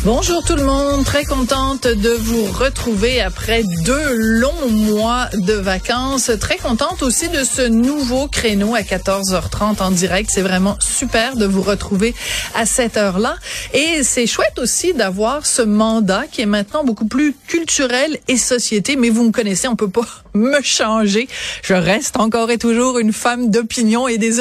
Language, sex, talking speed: French, female, 170 wpm